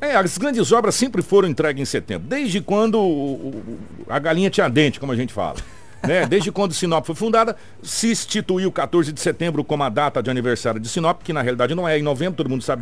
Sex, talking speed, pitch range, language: male, 230 wpm, 135-195 Hz, Portuguese